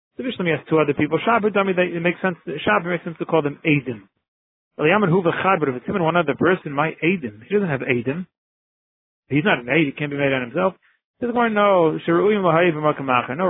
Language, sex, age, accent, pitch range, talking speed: English, male, 40-59, American, 145-180 Hz, 220 wpm